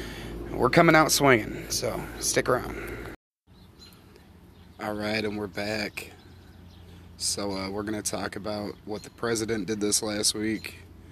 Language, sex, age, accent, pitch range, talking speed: English, male, 30-49, American, 100-115 Hz, 140 wpm